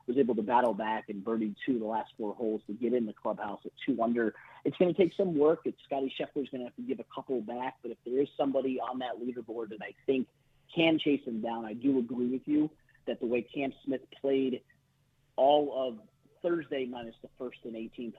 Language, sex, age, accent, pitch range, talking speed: English, male, 40-59, American, 115-140 Hz, 240 wpm